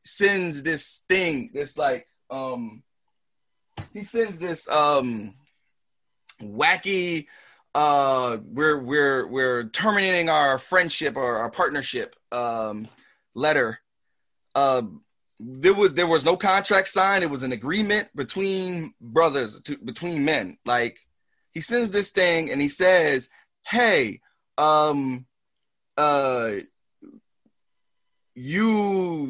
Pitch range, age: 130-185 Hz, 20-39